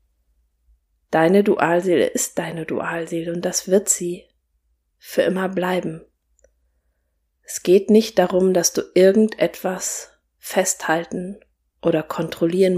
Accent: German